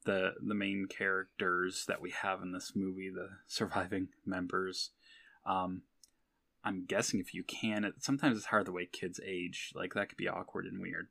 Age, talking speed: 10-29, 185 wpm